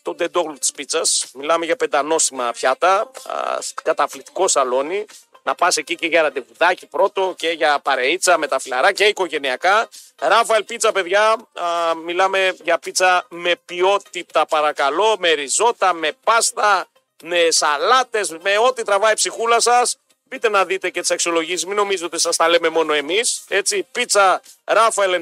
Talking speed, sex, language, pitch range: 155 wpm, male, Greek, 180-240 Hz